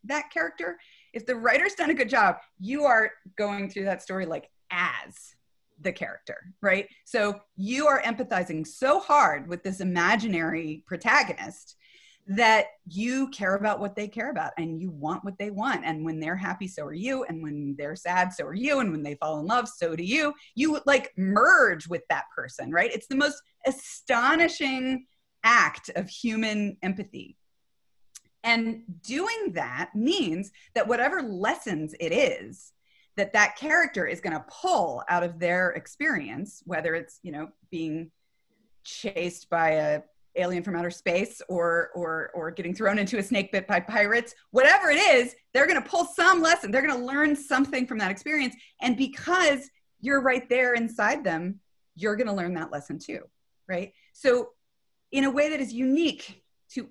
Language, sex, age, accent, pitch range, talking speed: English, female, 30-49, American, 175-265 Hz, 170 wpm